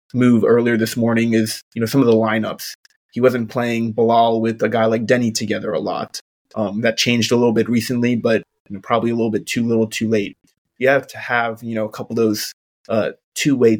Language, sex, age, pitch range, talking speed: English, male, 20-39, 110-120 Hz, 230 wpm